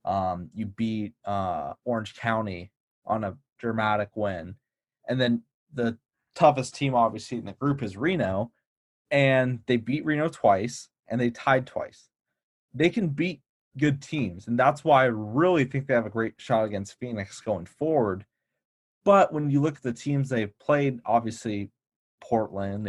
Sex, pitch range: male, 105-130 Hz